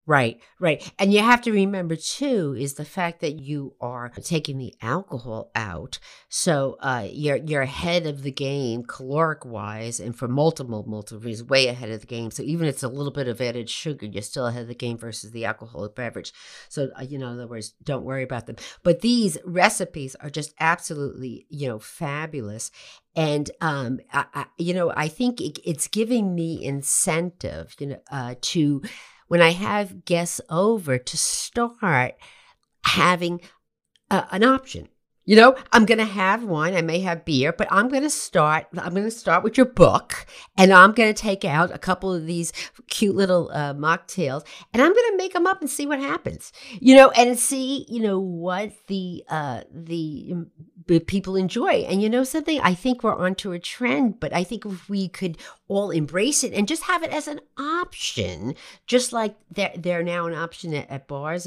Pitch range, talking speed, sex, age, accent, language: 140-205 Hz, 190 wpm, female, 50-69, American, English